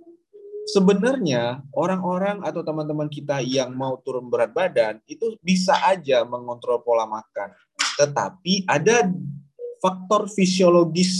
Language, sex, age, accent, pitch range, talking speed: Indonesian, male, 20-39, native, 150-205 Hz, 105 wpm